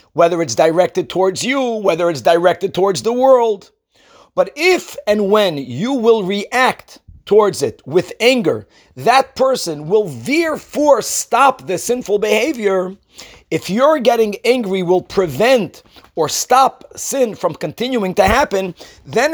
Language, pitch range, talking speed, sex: English, 185-245 Hz, 140 wpm, male